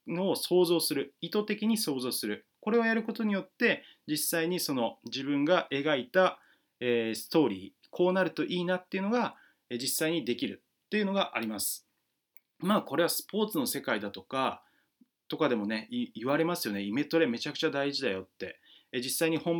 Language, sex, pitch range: Japanese, male, 135-185 Hz